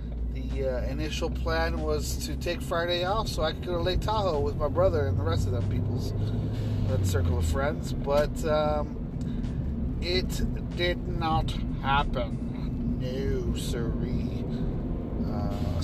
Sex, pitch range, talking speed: male, 80-125 Hz, 140 wpm